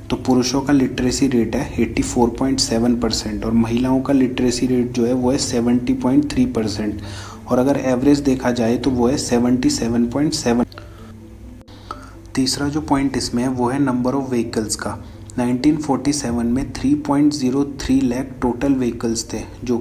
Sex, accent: male, native